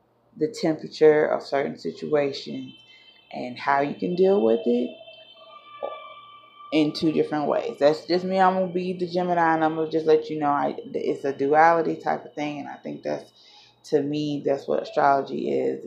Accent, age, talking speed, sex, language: American, 20-39, 180 wpm, female, English